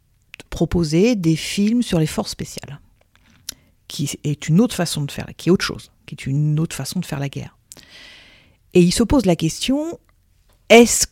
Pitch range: 145-185 Hz